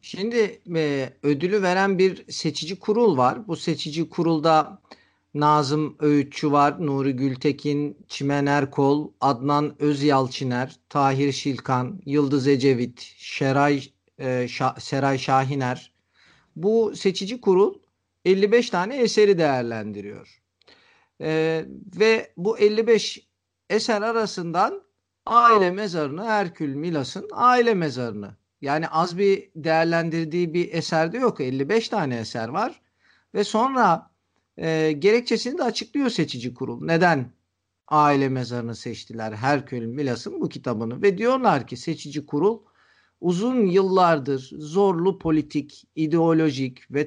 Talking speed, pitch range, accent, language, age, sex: 110 wpm, 135-195 Hz, native, Turkish, 50-69, male